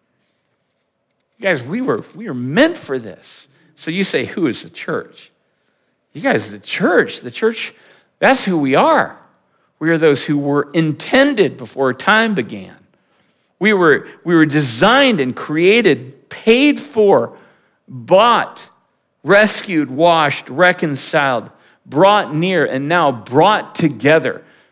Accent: American